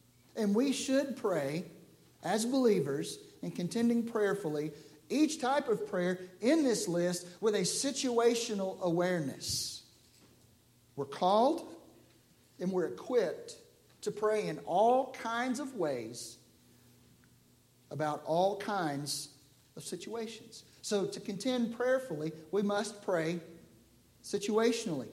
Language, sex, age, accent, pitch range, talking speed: English, male, 50-69, American, 170-230 Hz, 105 wpm